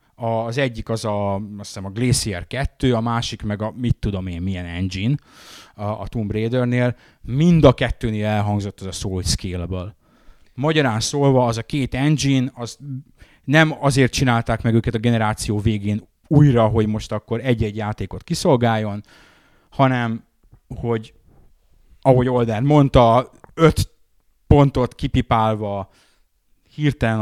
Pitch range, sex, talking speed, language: 105-130 Hz, male, 130 wpm, Hungarian